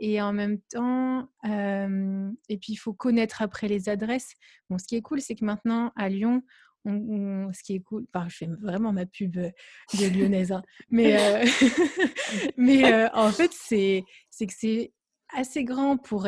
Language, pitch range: French, 200-245 Hz